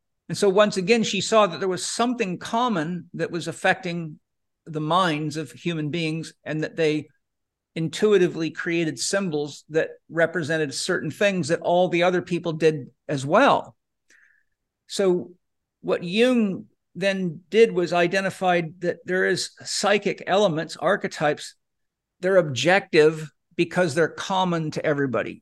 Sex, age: male, 50-69